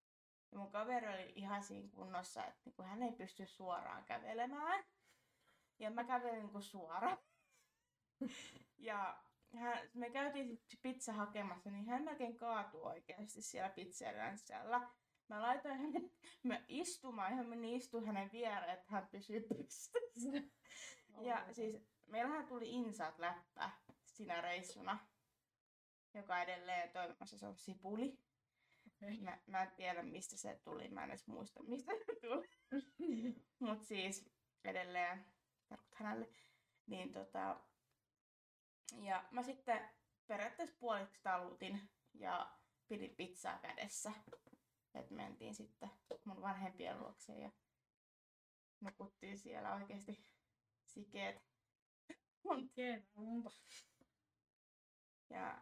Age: 20-39